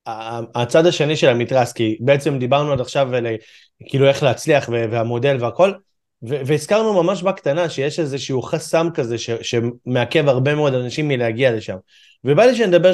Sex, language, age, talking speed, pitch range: male, Hebrew, 20-39, 160 wpm, 125-165 Hz